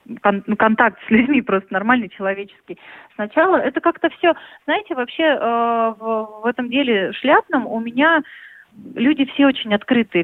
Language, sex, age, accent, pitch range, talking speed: Russian, female, 30-49, native, 210-265 Hz, 140 wpm